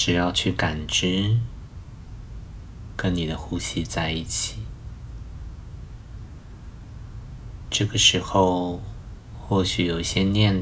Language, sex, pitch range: Chinese, male, 90-110 Hz